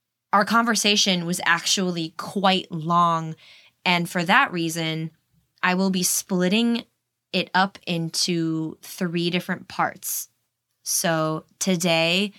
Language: English